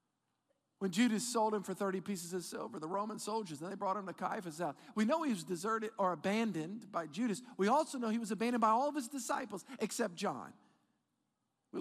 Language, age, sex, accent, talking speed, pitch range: English, 50-69, male, American, 215 wpm, 180-235 Hz